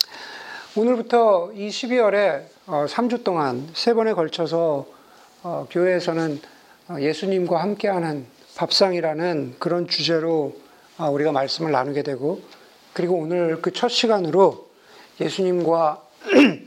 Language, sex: Korean, male